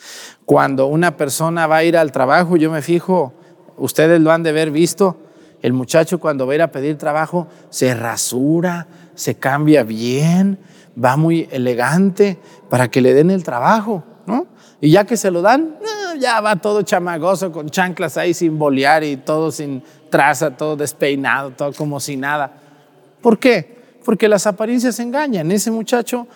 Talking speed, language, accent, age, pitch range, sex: 170 wpm, Spanish, Mexican, 40-59, 155-215 Hz, male